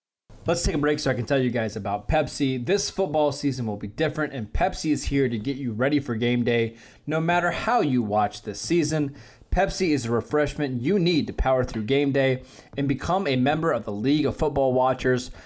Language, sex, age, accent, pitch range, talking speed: English, male, 20-39, American, 125-155 Hz, 220 wpm